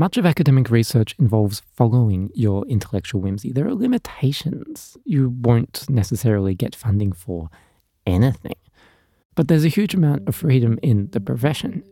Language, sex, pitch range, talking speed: English, male, 110-150 Hz, 145 wpm